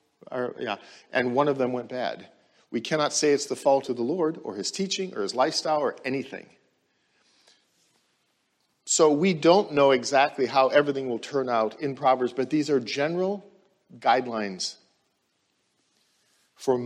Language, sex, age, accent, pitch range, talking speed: English, male, 50-69, American, 125-170 Hz, 155 wpm